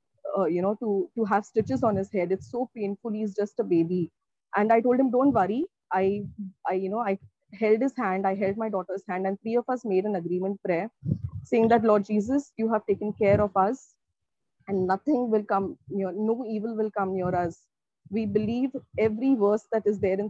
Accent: Indian